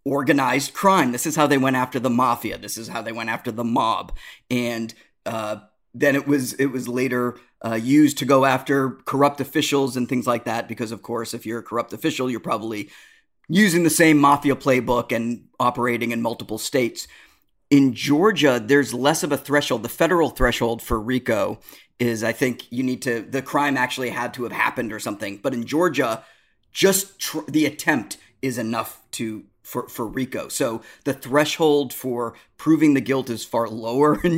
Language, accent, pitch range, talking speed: English, American, 115-145 Hz, 190 wpm